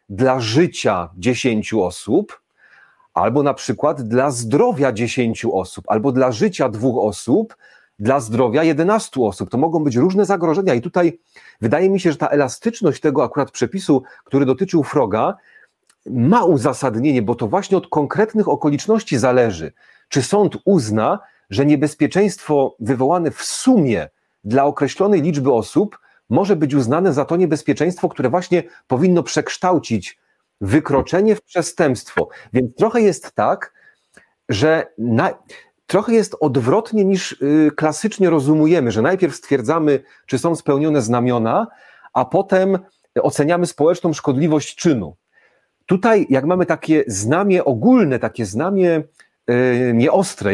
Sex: male